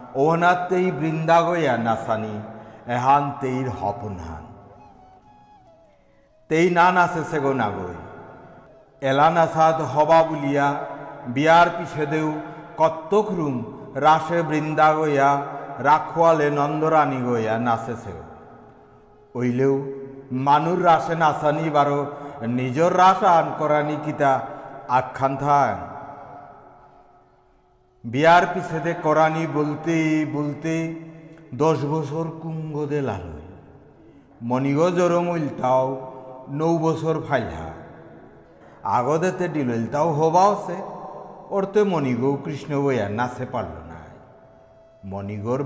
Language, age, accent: Bengali, 60-79, native